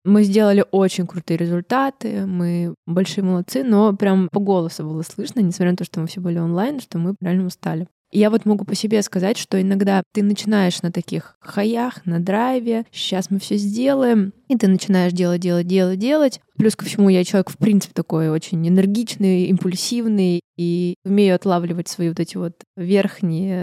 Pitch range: 180-205 Hz